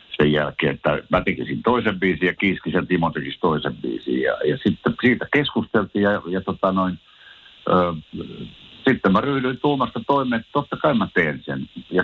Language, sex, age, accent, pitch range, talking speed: Finnish, male, 60-79, native, 85-110 Hz, 170 wpm